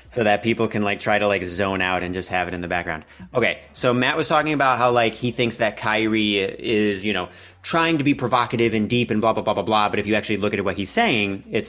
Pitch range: 105-155 Hz